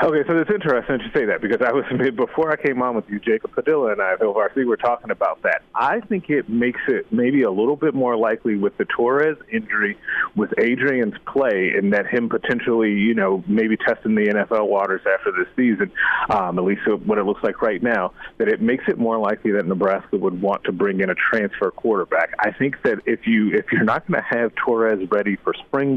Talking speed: 225 wpm